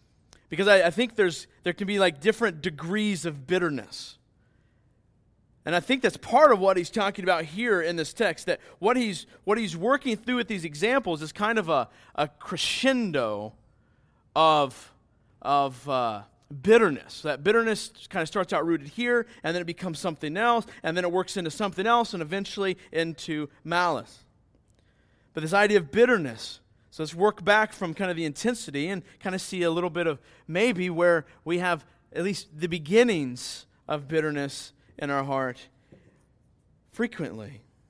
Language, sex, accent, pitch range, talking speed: English, male, American, 125-190 Hz, 170 wpm